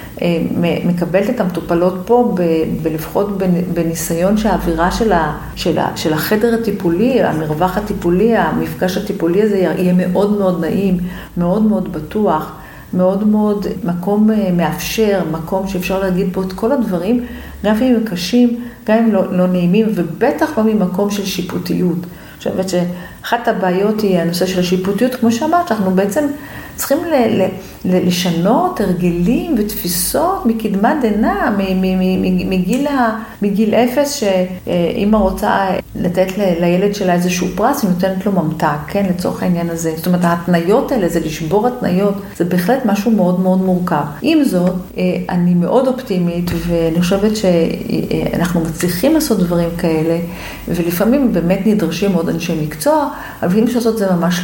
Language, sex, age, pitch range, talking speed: Hebrew, female, 50-69, 175-215 Hz, 150 wpm